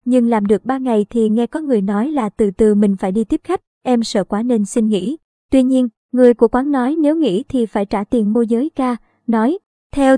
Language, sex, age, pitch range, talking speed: Vietnamese, male, 20-39, 220-265 Hz, 240 wpm